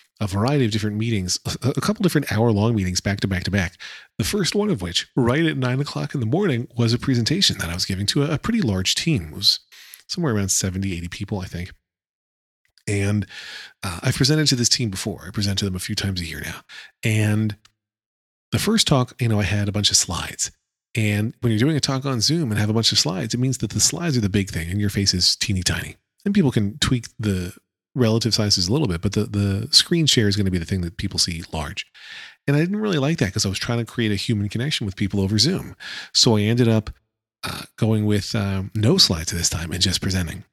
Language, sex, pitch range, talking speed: English, male, 95-125 Hz, 245 wpm